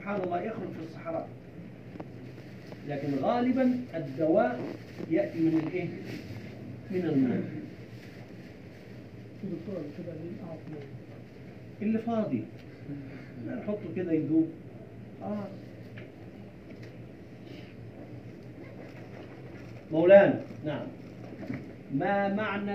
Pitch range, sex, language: 135-195 Hz, male, Arabic